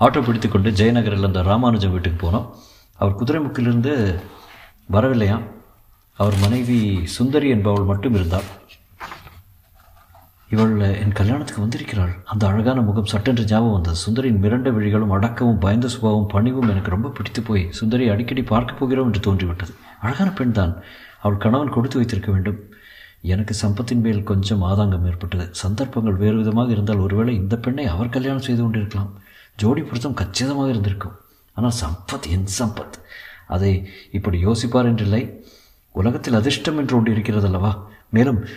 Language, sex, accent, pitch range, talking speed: Tamil, male, native, 100-120 Hz, 135 wpm